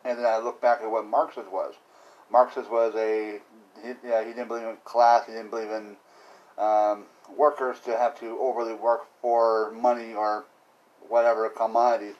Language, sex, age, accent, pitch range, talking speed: English, male, 40-59, American, 110-125 Hz, 170 wpm